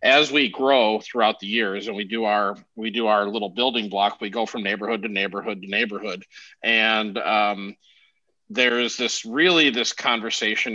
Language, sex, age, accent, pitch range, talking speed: English, male, 40-59, American, 110-130 Hz, 175 wpm